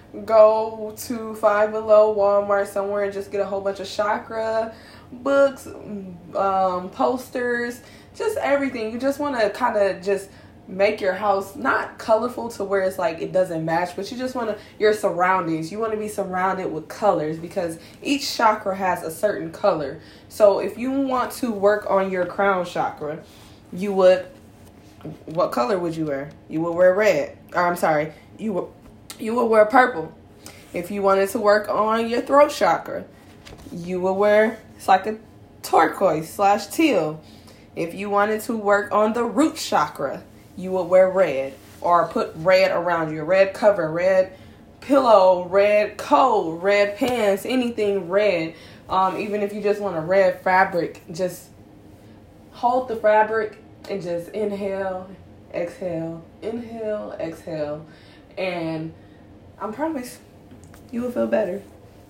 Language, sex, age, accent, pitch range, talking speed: English, female, 20-39, American, 180-225 Hz, 155 wpm